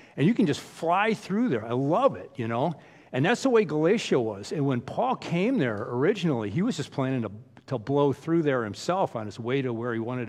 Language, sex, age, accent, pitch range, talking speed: English, male, 50-69, American, 125-155 Hz, 240 wpm